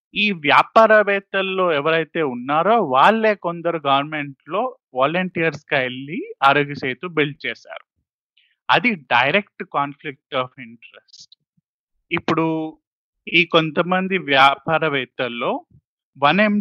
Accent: native